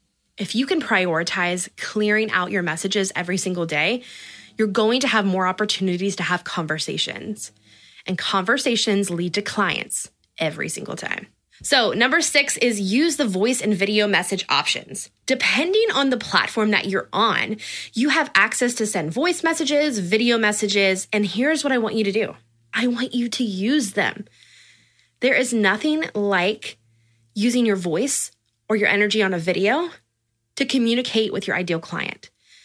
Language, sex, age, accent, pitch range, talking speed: English, female, 20-39, American, 185-245 Hz, 160 wpm